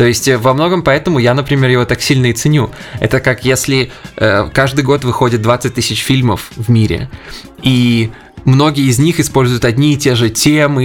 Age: 20-39